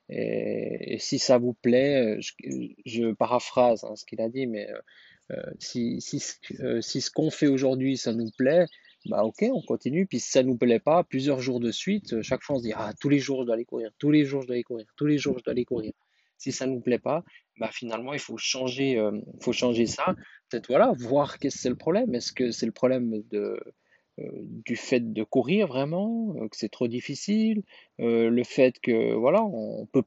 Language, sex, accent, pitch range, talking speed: French, male, French, 115-140 Hz, 230 wpm